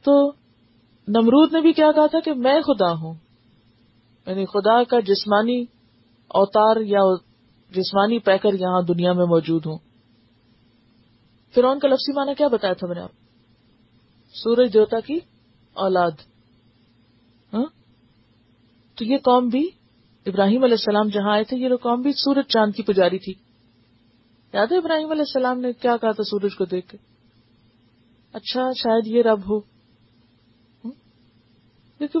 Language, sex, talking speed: Urdu, female, 140 wpm